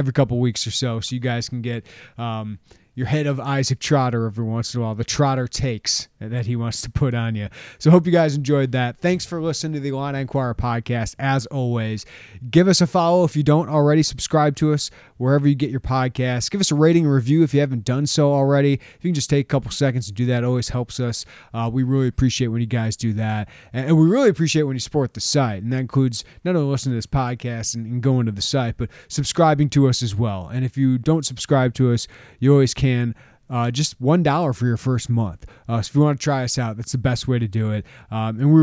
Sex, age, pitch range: male, 30-49, 115-140 Hz